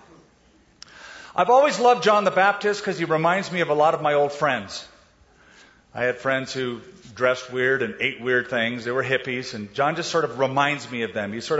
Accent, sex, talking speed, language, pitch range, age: American, male, 210 wpm, English, 130-195 Hz, 40-59